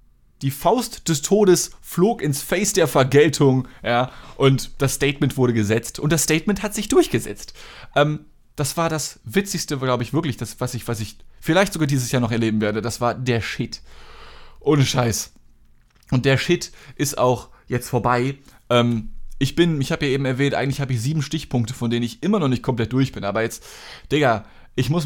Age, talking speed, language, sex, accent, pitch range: 20-39, 190 wpm, German, male, German, 115-150 Hz